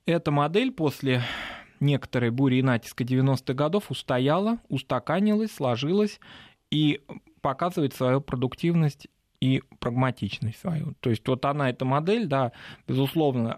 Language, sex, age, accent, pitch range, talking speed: Russian, male, 20-39, native, 110-140 Hz, 120 wpm